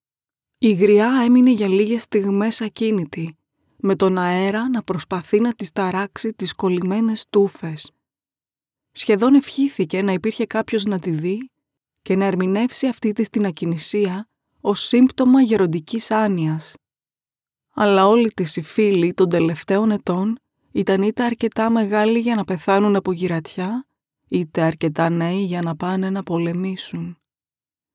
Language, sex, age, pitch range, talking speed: Greek, female, 20-39, 180-225 Hz, 130 wpm